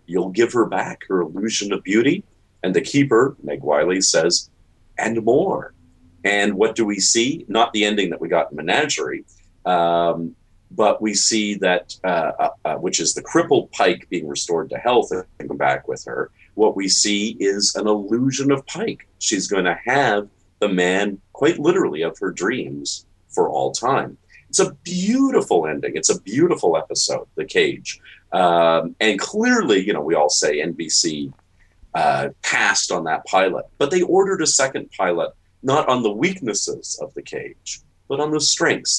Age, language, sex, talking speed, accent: 40-59, English, male, 175 wpm, American